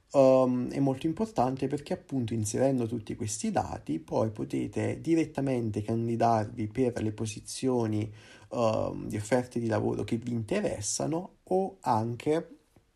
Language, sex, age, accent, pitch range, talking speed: Italian, male, 30-49, native, 115-140 Hz, 125 wpm